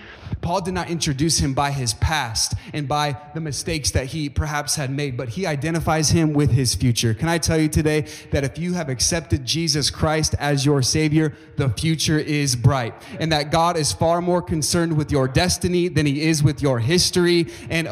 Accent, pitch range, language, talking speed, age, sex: American, 105-150 Hz, English, 200 wpm, 30-49, male